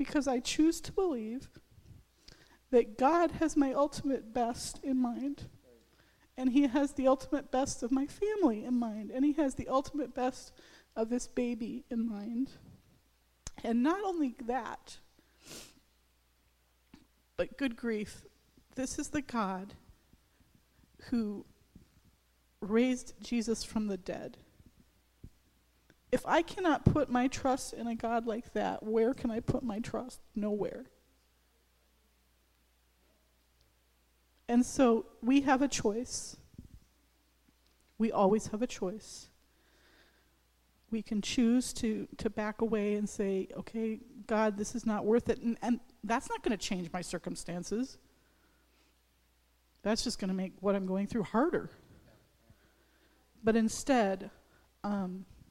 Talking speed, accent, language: 130 wpm, American, English